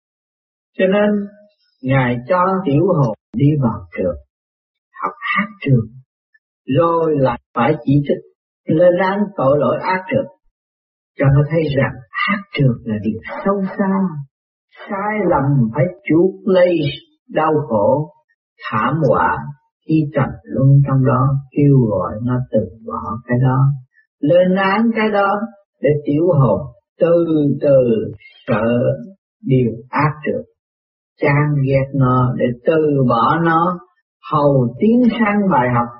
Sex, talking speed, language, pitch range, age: male, 130 wpm, Vietnamese, 130-195 Hz, 50-69